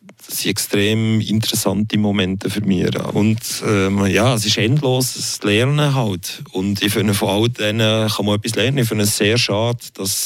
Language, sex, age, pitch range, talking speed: German, male, 30-49, 95-110 Hz, 185 wpm